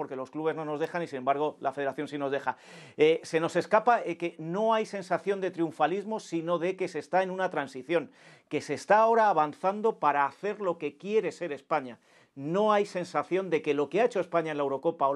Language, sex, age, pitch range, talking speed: Spanish, male, 40-59, 145-180 Hz, 235 wpm